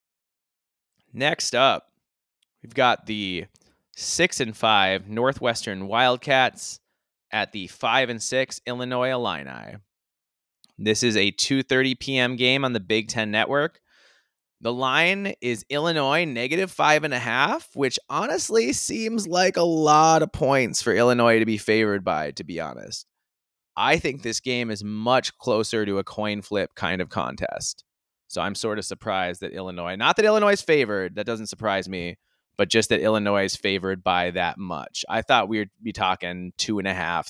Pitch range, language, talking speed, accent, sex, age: 100-130 Hz, English, 160 wpm, American, male, 20-39